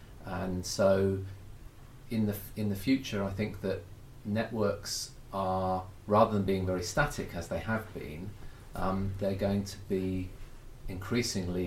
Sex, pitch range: male, 90-110 Hz